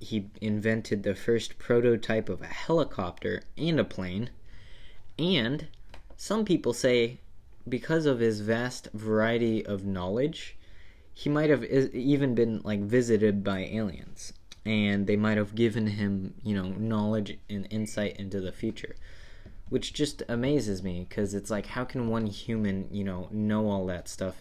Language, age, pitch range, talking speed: English, 20-39, 100-115 Hz, 150 wpm